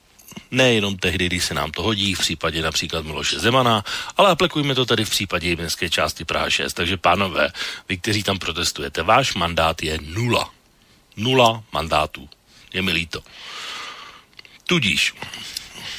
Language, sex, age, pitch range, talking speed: Slovak, male, 40-59, 85-110 Hz, 145 wpm